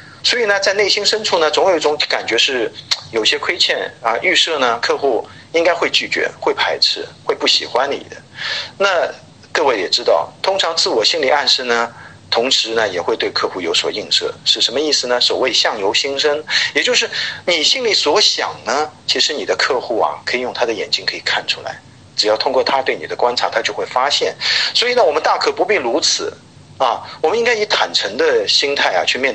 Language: Chinese